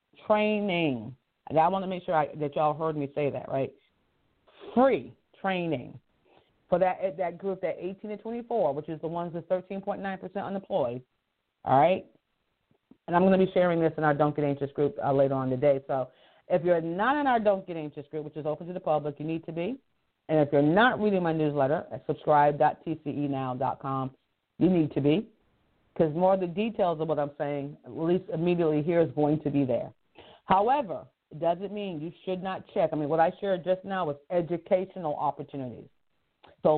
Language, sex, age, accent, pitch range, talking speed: English, female, 40-59, American, 150-190 Hz, 200 wpm